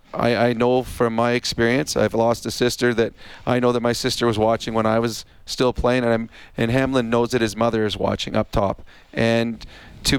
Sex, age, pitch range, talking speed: male, 40-59, 115-125 Hz, 220 wpm